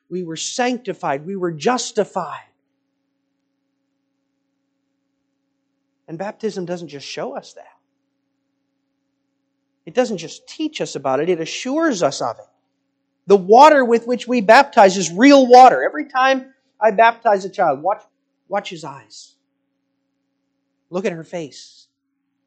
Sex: male